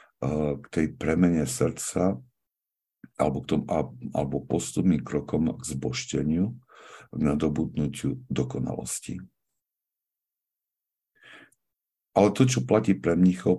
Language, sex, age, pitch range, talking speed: Slovak, male, 60-79, 70-90 Hz, 95 wpm